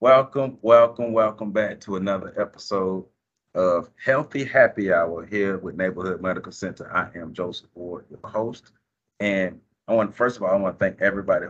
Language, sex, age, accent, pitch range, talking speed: English, male, 30-49, American, 90-110 Hz, 170 wpm